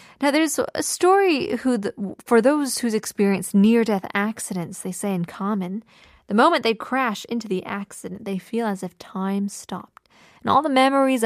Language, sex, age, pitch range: Korean, female, 20-39, 195-275 Hz